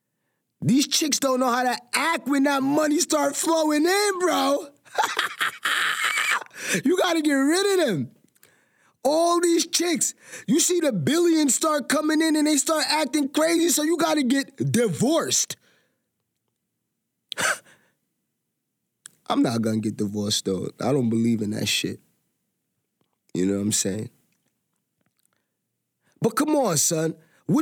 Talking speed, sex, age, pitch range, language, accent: 140 wpm, male, 20-39, 230-320 Hz, English, American